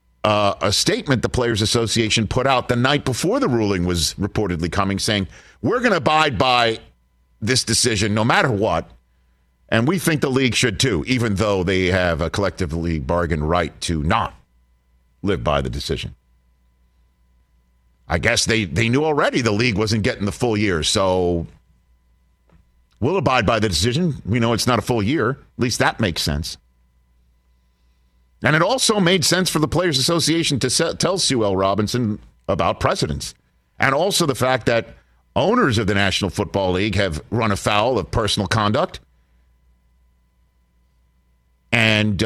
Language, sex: English, male